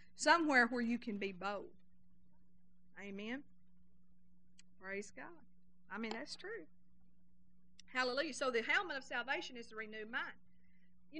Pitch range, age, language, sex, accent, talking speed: 180-270 Hz, 40-59, English, female, American, 130 wpm